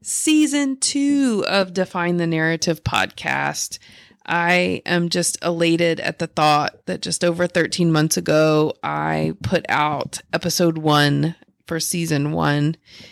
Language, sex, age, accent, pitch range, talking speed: English, female, 30-49, American, 155-175 Hz, 130 wpm